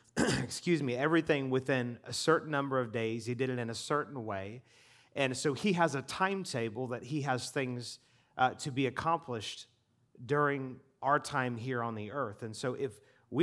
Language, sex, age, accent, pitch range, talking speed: English, male, 30-49, American, 115-140 Hz, 185 wpm